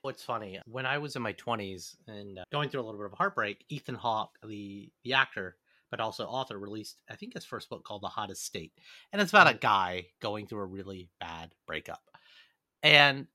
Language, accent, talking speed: English, American, 210 wpm